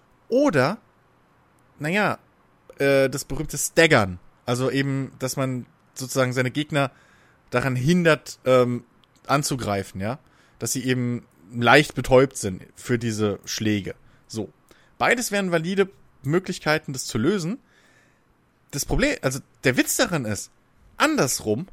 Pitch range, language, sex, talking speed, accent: 125-165 Hz, German, male, 120 wpm, German